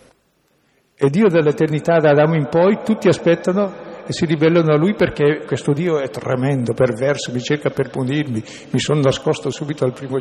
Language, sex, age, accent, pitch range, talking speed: Italian, male, 60-79, native, 125-155 Hz, 170 wpm